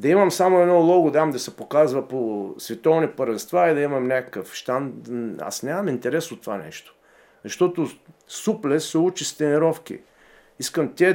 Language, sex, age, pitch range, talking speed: Bulgarian, male, 50-69, 130-180 Hz, 165 wpm